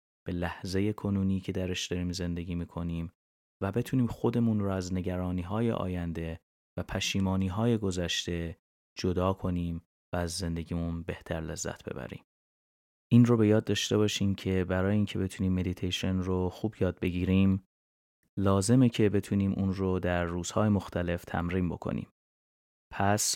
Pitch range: 85-100 Hz